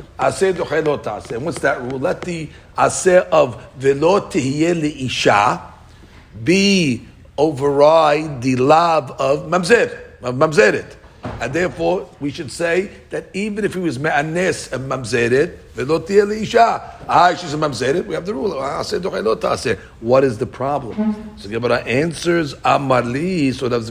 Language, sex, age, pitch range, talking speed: English, male, 50-69, 125-160 Hz, 145 wpm